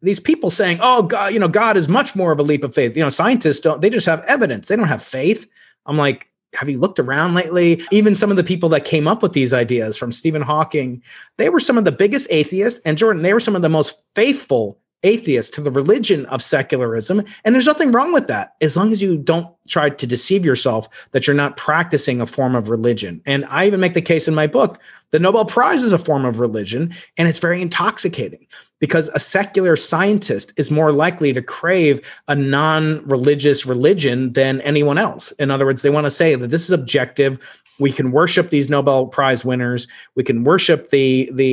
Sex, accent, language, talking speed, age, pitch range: male, American, English, 220 wpm, 30-49, 135-180 Hz